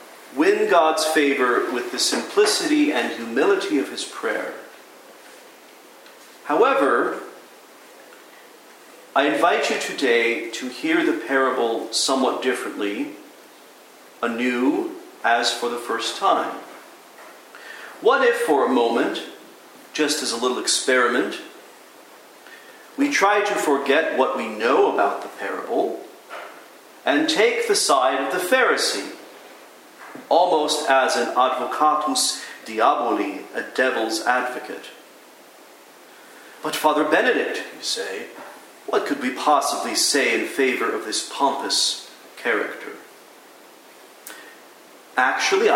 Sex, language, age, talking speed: male, English, 40-59, 105 wpm